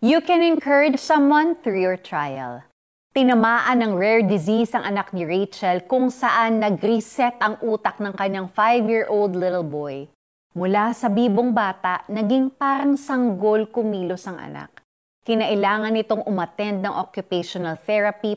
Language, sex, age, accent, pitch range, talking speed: Filipino, female, 30-49, native, 190-245 Hz, 135 wpm